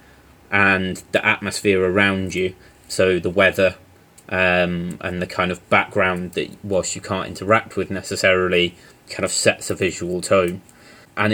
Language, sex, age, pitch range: English, male, 30-49, 90-105 Hz